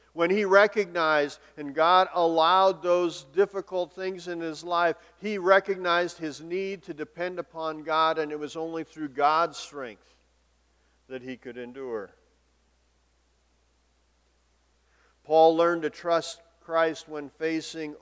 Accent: American